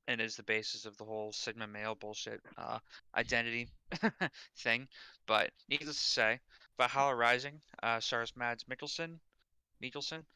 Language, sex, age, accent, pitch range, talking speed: English, male, 30-49, American, 110-140 Hz, 140 wpm